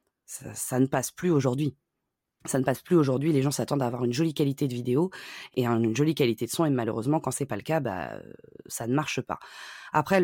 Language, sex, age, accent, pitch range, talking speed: French, female, 20-39, French, 130-165 Hz, 240 wpm